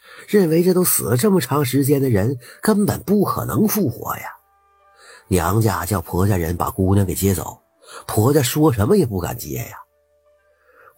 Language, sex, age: Chinese, male, 50-69